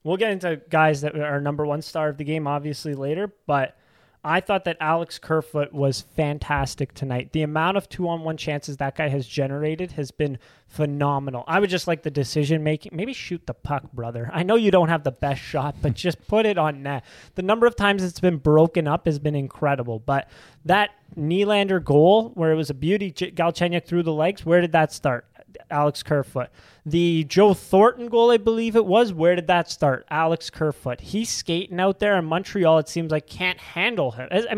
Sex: male